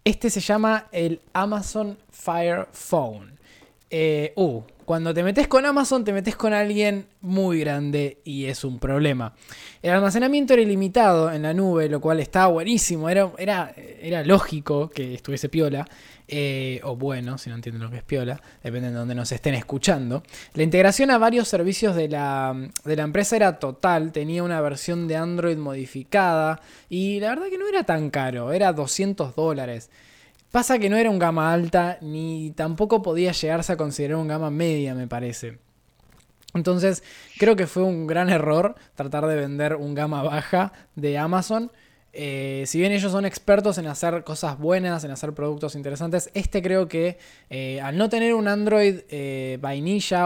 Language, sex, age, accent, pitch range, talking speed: Spanish, male, 20-39, Argentinian, 140-185 Hz, 170 wpm